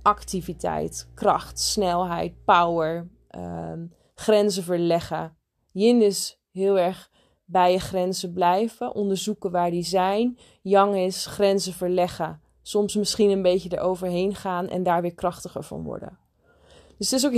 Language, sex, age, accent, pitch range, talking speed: Dutch, female, 20-39, Dutch, 180-225 Hz, 130 wpm